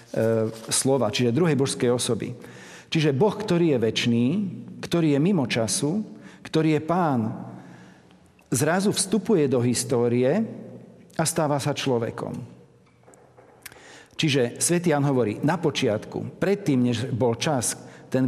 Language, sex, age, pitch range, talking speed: Slovak, male, 50-69, 120-150 Hz, 115 wpm